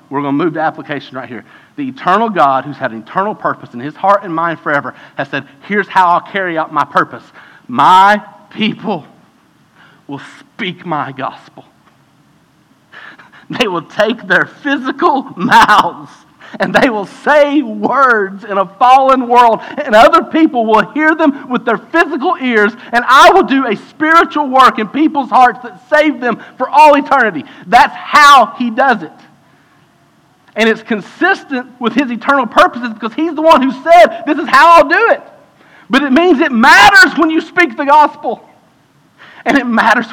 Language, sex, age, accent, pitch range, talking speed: English, male, 50-69, American, 210-295 Hz, 170 wpm